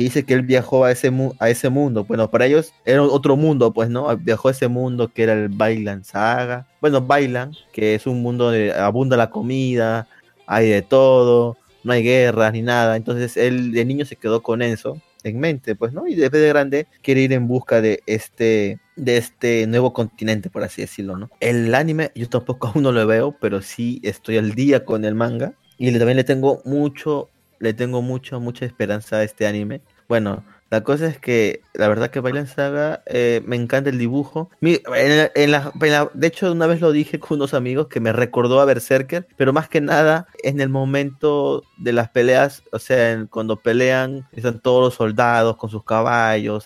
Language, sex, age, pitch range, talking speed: Spanish, male, 20-39, 110-140 Hz, 210 wpm